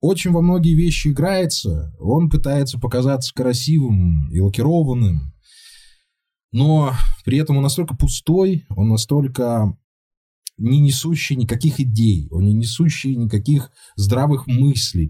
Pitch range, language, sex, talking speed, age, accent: 100-145 Hz, Russian, male, 115 wpm, 20-39, native